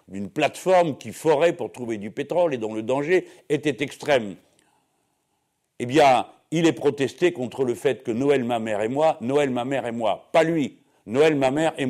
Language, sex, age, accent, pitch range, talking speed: French, male, 60-79, French, 120-155 Hz, 195 wpm